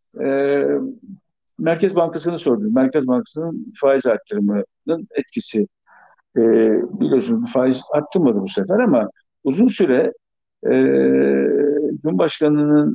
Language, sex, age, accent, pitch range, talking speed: Turkish, male, 60-79, native, 130-205 Hz, 95 wpm